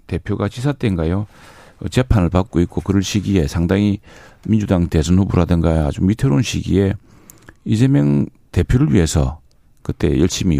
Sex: male